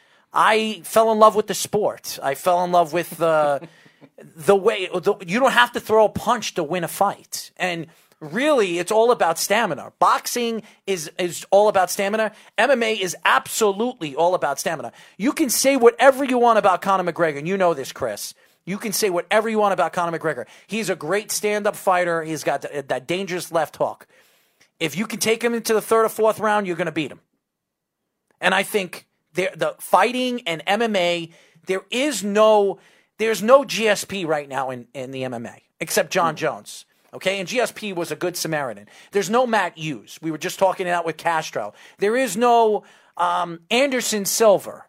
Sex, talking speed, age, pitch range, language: male, 190 wpm, 40-59, 175-225 Hz, English